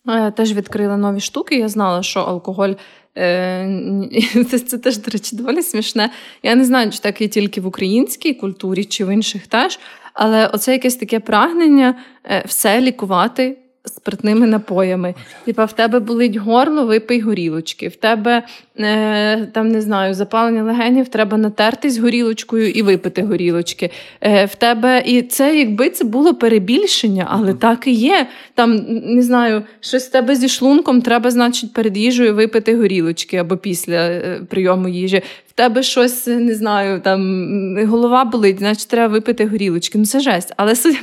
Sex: female